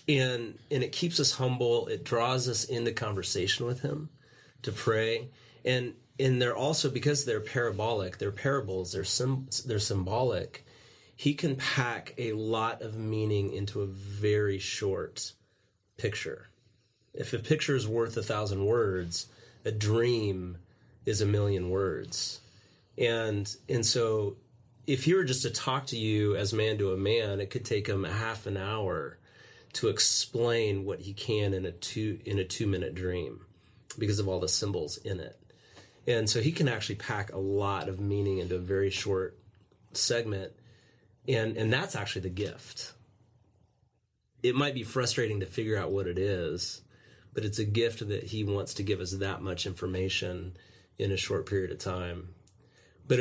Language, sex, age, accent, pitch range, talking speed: English, male, 30-49, American, 100-120 Hz, 165 wpm